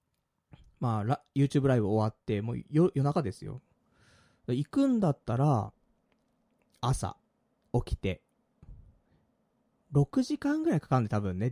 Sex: male